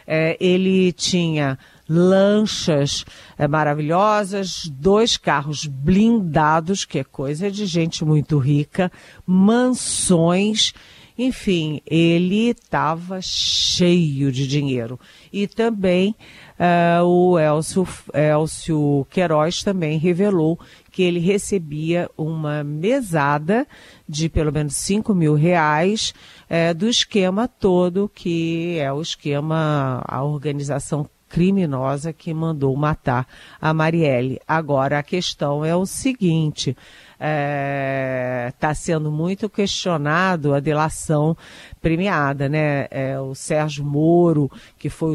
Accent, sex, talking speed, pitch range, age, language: Brazilian, female, 100 wpm, 145-180 Hz, 40-59, Portuguese